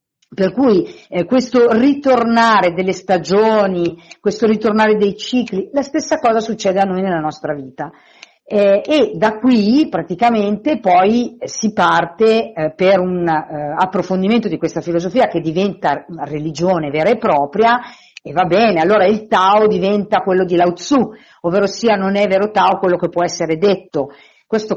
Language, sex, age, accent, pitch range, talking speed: Italian, female, 50-69, native, 170-220 Hz, 160 wpm